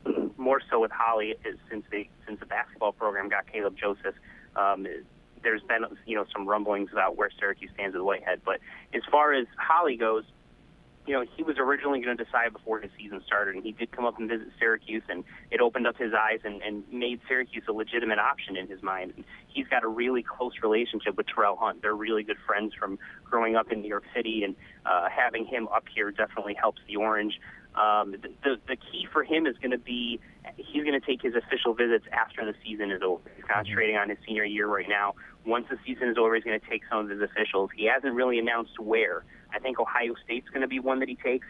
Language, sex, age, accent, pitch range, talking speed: English, male, 30-49, American, 105-125 Hz, 230 wpm